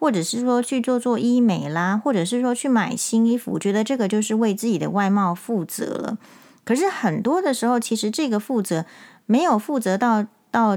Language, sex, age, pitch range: Chinese, female, 30-49, 190-245 Hz